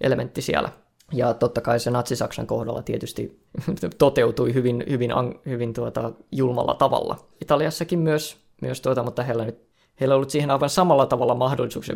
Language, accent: Finnish, native